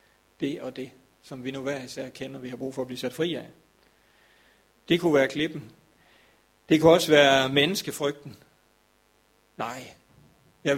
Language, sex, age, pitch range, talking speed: Danish, male, 40-59, 130-150 Hz, 160 wpm